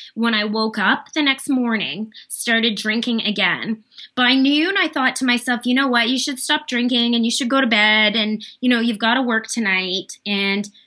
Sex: female